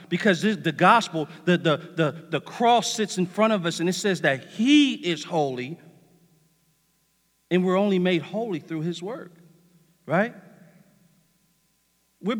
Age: 40-59